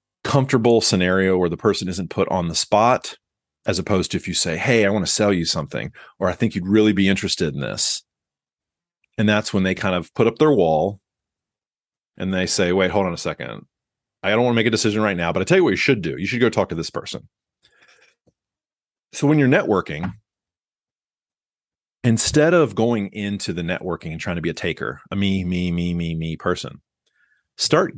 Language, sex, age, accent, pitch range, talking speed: English, male, 30-49, American, 90-115 Hz, 210 wpm